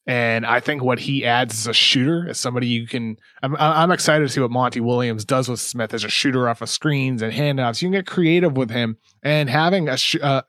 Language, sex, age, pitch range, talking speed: English, male, 20-39, 120-160 Hz, 245 wpm